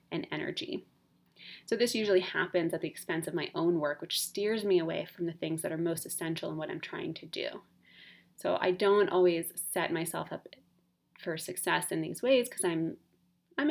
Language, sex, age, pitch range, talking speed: English, female, 20-39, 170-220 Hz, 195 wpm